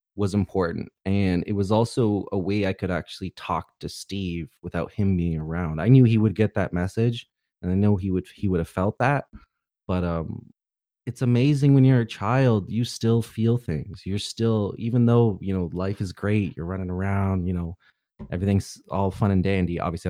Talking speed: 200 wpm